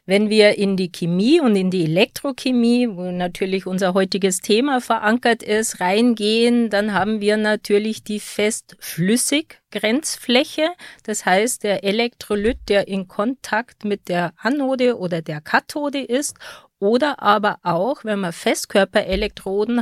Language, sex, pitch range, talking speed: German, female, 190-235 Hz, 135 wpm